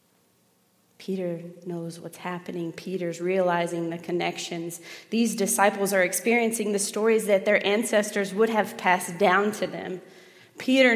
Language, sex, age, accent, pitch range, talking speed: English, female, 20-39, American, 180-205 Hz, 130 wpm